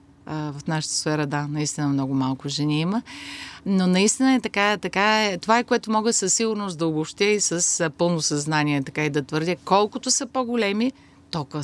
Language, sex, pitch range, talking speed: Bulgarian, female, 150-190 Hz, 180 wpm